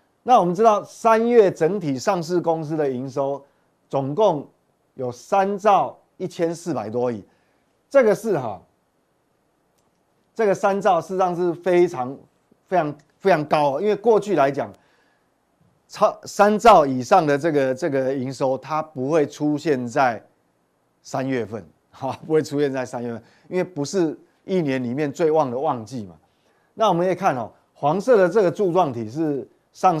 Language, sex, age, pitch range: Chinese, male, 30-49, 135-195 Hz